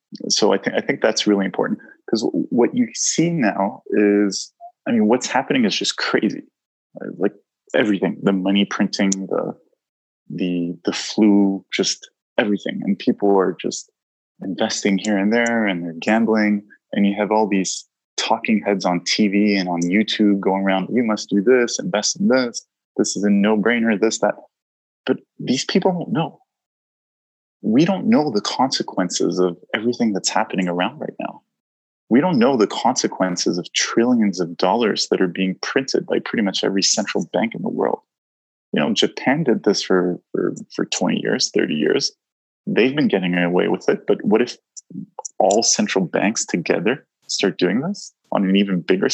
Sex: male